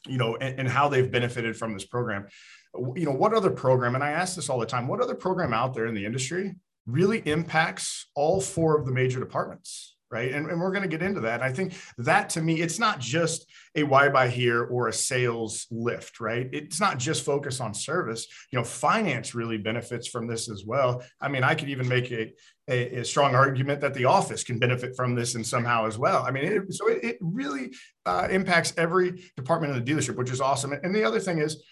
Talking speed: 225 wpm